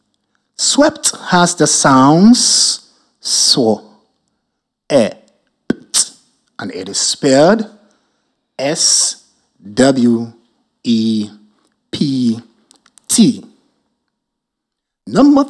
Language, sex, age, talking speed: English, male, 60-79, 55 wpm